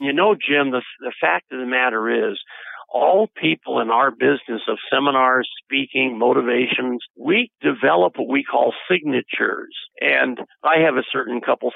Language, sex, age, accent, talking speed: English, male, 50-69, American, 160 wpm